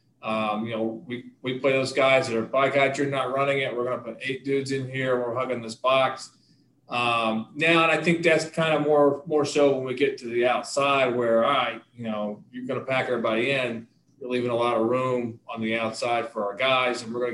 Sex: male